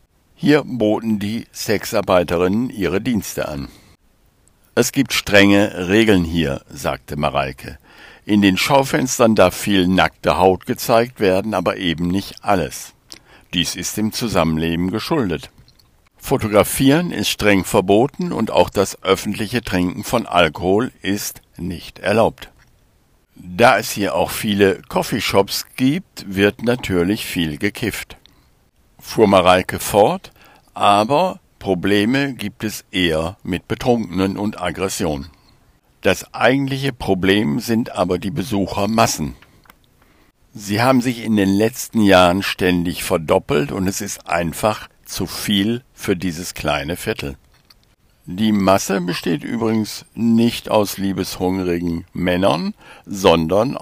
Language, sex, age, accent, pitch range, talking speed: German, male, 60-79, German, 90-115 Hz, 115 wpm